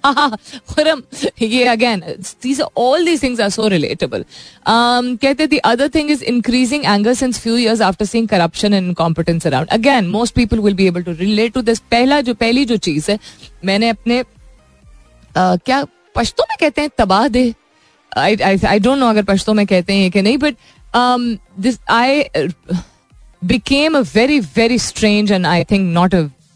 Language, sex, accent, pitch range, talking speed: Hindi, female, native, 180-240 Hz, 190 wpm